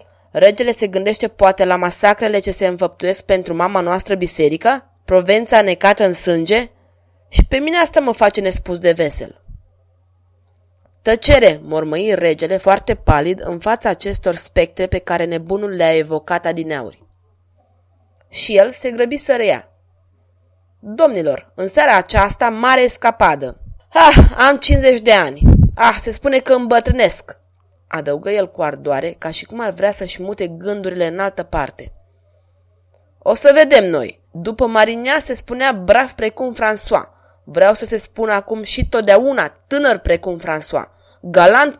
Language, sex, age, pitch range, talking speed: Romanian, female, 20-39, 155-230 Hz, 145 wpm